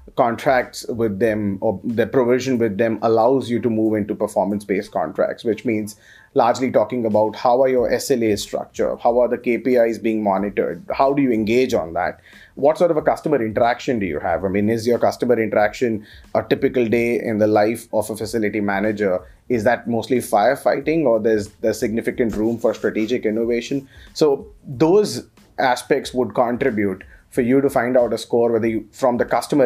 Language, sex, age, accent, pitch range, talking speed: English, male, 30-49, Indian, 105-125 Hz, 185 wpm